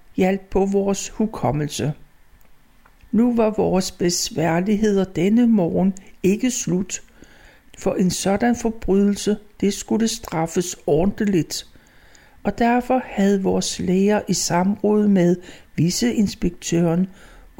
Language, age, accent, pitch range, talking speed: Danish, 60-79, native, 180-220 Hz, 100 wpm